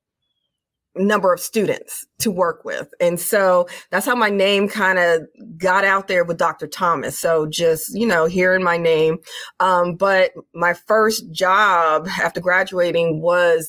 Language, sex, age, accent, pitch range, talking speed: English, female, 30-49, American, 165-200 Hz, 155 wpm